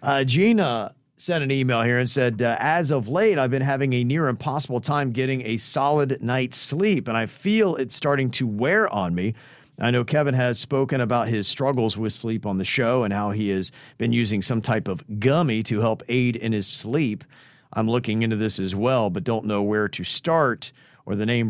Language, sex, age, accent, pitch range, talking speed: English, male, 40-59, American, 100-130 Hz, 215 wpm